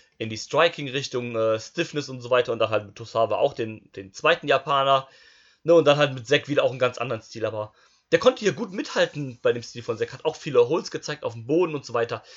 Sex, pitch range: male, 115-155 Hz